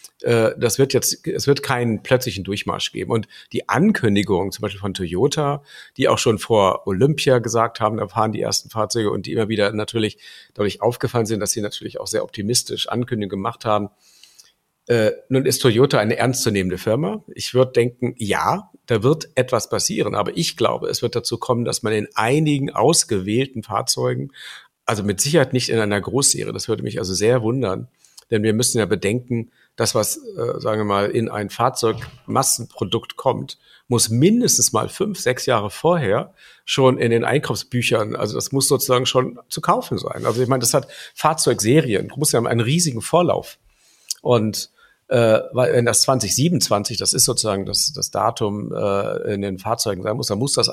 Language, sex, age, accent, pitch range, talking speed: German, male, 50-69, German, 105-135 Hz, 180 wpm